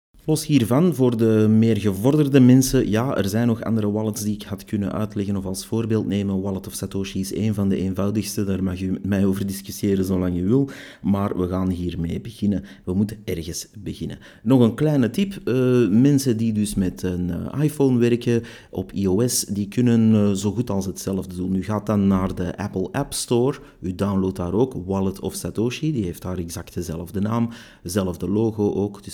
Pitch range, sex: 95-110 Hz, male